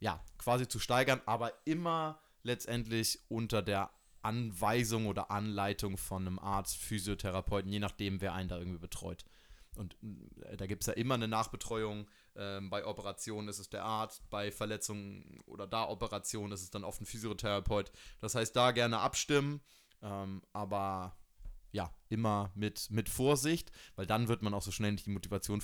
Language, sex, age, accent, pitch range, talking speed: German, male, 20-39, German, 100-115 Hz, 165 wpm